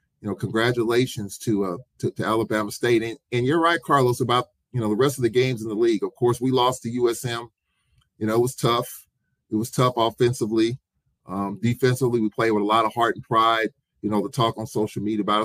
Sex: male